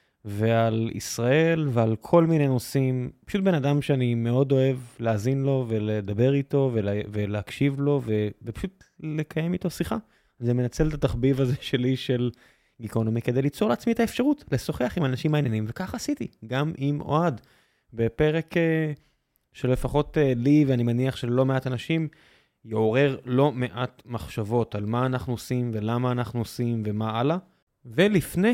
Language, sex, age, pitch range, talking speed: Hebrew, male, 20-39, 120-165 Hz, 145 wpm